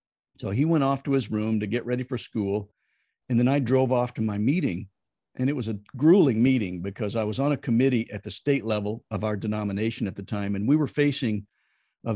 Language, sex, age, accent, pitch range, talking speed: English, male, 50-69, American, 105-135 Hz, 230 wpm